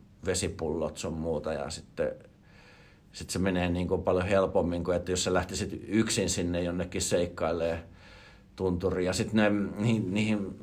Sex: male